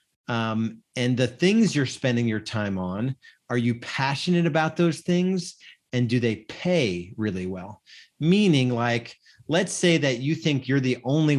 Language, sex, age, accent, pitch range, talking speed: English, male, 30-49, American, 115-140 Hz, 165 wpm